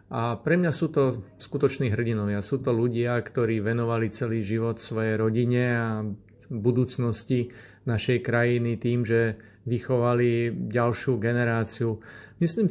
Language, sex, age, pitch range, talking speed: Slovak, male, 40-59, 110-120 Hz, 125 wpm